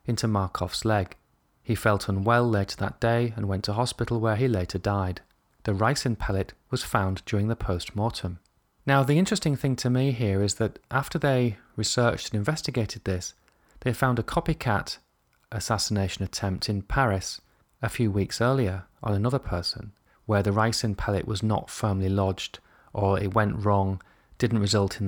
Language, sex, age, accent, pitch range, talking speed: English, male, 30-49, British, 100-120 Hz, 165 wpm